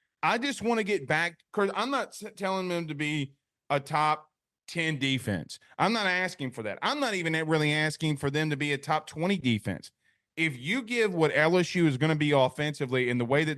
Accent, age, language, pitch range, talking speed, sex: American, 30-49, English, 145-195 Hz, 215 wpm, male